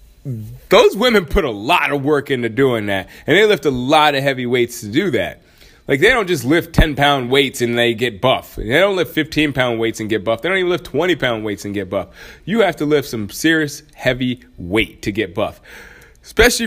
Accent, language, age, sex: American, English, 30-49, male